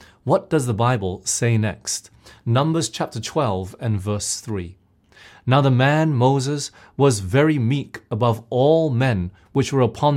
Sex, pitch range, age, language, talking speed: male, 110-150 Hz, 30-49, English, 150 wpm